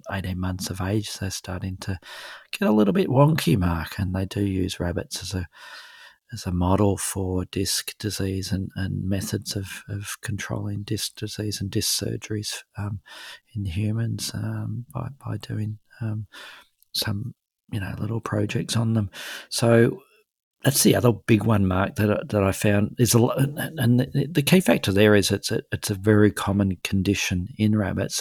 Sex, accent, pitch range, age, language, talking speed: male, Australian, 95-110 Hz, 40-59, English, 170 wpm